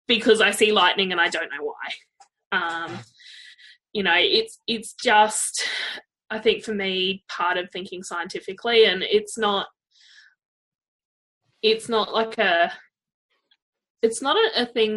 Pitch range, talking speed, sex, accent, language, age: 185-235 Hz, 140 wpm, female, Australian, English, 10-29